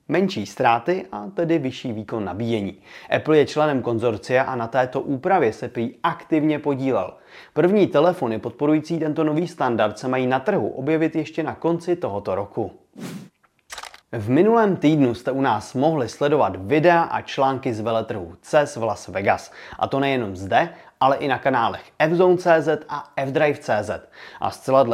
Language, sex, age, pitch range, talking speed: Czech, male, 30-49, 115-165 Hz, 155 wpm